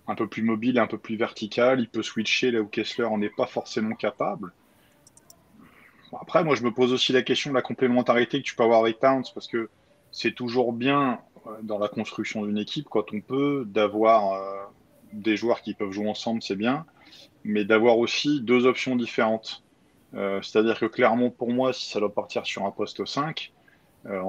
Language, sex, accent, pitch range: French, male, French, 105-125 Hz